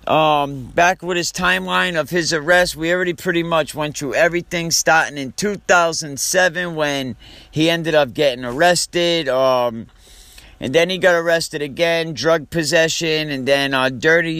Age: 50-69